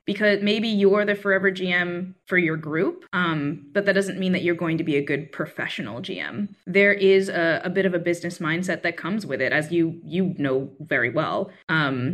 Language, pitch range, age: English, 155-190 Hz, 20-39